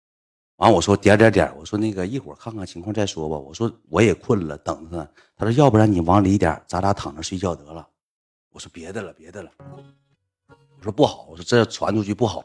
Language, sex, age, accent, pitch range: Chinese, male, 30-49, native, 90-140 Hz